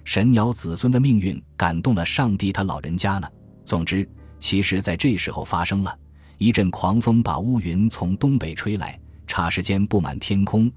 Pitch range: 80-110 Hz